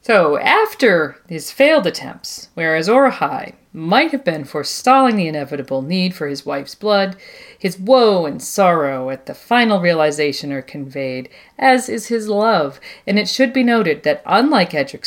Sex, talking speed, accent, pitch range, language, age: female, 160 wpm, American, 150-230 Hz, English, 40-59